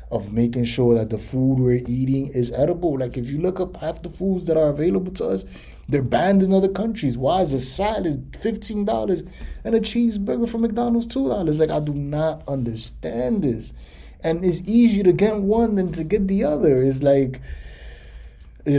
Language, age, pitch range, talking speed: English, 20-39, 105-155 Hz, 190 wpm